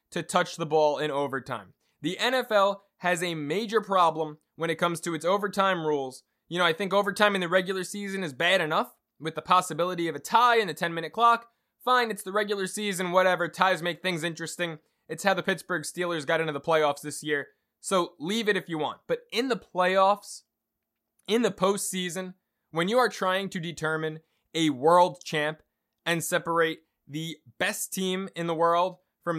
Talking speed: 190 wpm